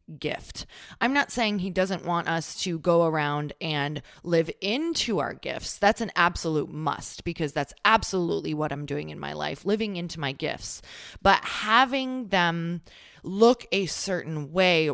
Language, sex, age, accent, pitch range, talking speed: English, female, 20-39, American, 155-200 Hz, 160 wpm